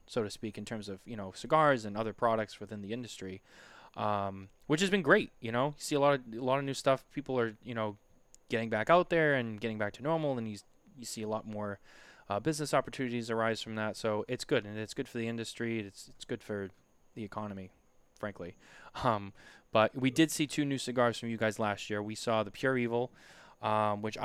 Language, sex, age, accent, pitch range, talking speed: English, male, 20-39, American, 105-125 Hz, 230 wpm